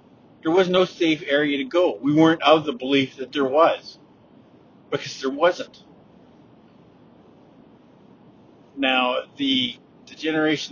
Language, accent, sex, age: English, American, male, 50-69